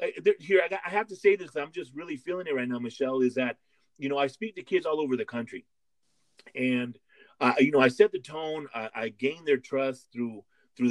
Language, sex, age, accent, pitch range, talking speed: English, male, 30-49, American, 125-155 Hz, 230 wpm